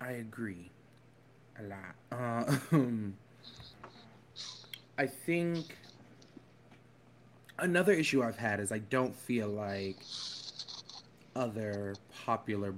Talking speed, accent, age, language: 85 wpm, American, 20-39, English